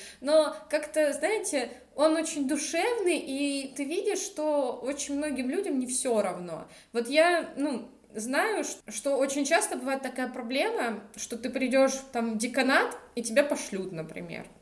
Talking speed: 150 wpm